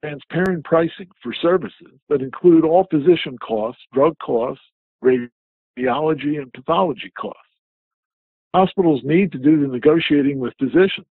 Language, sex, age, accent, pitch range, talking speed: English, male, 60-79, American, 125-160 Hz, 125 wpm